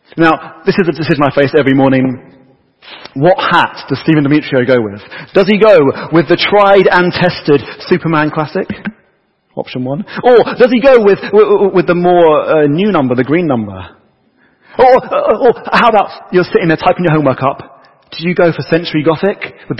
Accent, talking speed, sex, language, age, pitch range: British, 190 wpm, male, English, 40-59, 135-185 Hz